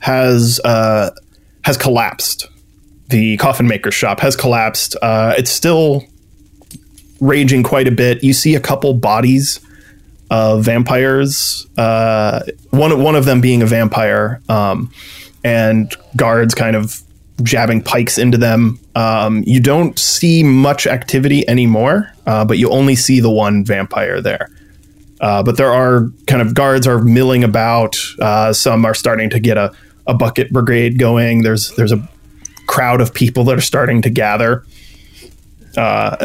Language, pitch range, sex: English, 110-125 Hz, male